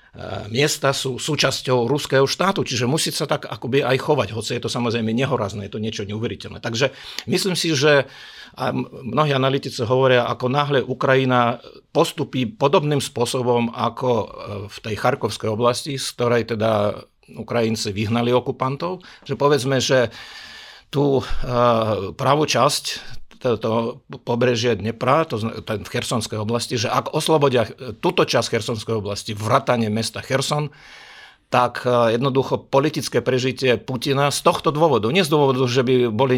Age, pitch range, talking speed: 50-69, 115-140 Hz, 135 wpm